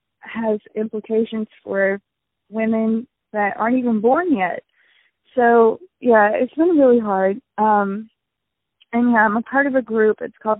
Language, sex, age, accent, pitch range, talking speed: English, female, 20-39, American, 200-235 Hz, 140 wpm